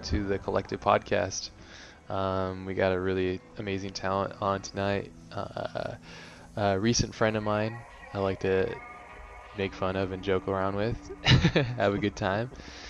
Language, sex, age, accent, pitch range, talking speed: English, male, 20-39, American, 95-100 Hz, 155 wpm